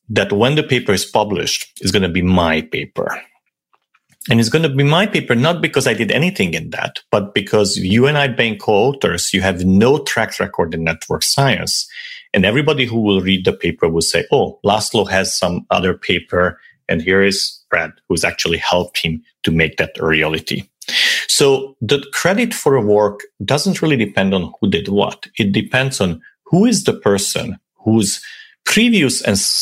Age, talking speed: 40-59, 185 wpm